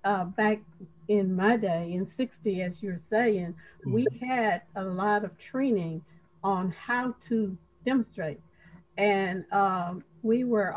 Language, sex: English, female